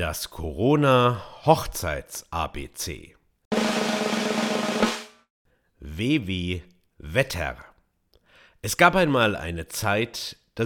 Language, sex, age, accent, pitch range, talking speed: German, male, 50-69, German, 85-120 Hz, 75 wpm